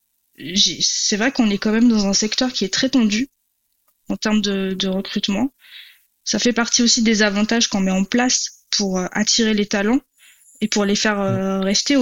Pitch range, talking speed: 195-230 Hz, 185 wpm